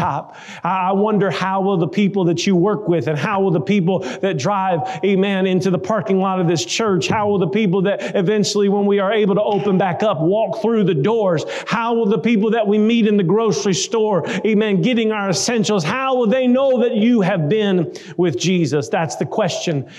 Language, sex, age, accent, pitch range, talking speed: English, male, 40-59, American, 170-205 Hz, 215 wpm